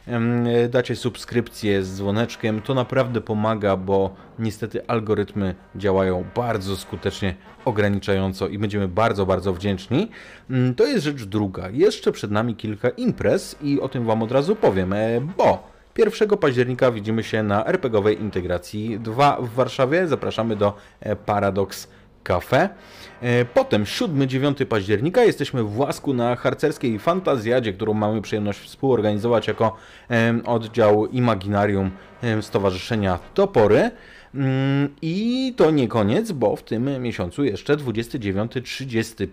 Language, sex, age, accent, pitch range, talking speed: Polish, male, 30-49, native, 100-125 Hz, 120 wpm